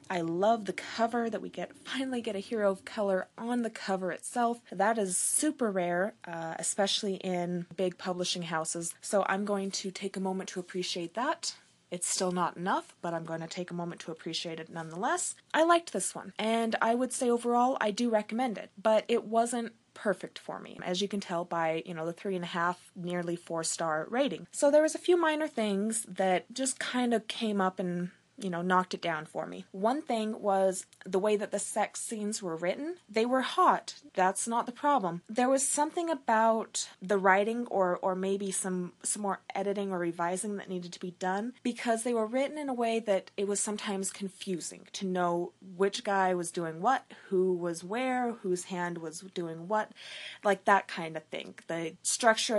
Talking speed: 205 wpm